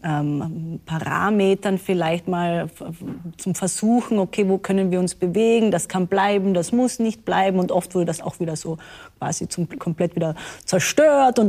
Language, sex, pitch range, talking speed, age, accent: German, female, 185-245 Hz, 160 wpm, 30-49, German